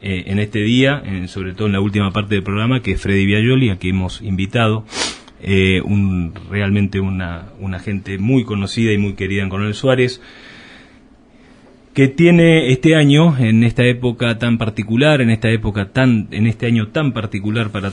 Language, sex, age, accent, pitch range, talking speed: Spanish, male, 30-49, Argentinian, 95-120 Hz, 175 wpm